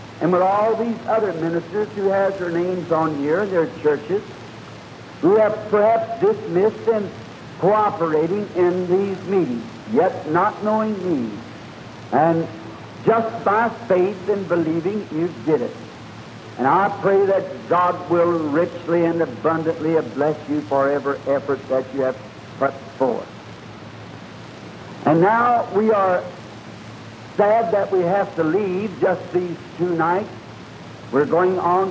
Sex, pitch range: male, 155-195 Hz